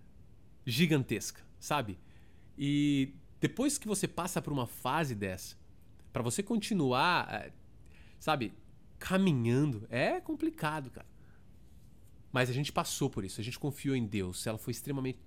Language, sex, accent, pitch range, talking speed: English, male, Brazilian, 120-190 Hz, 130 wpm